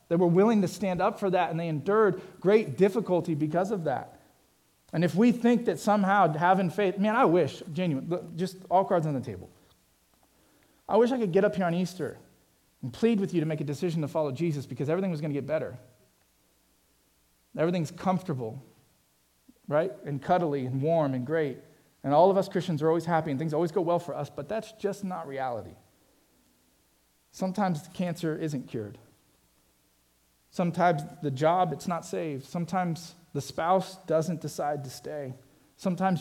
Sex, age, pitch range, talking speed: male, 40-59, 130-180 Hz, 180 wpm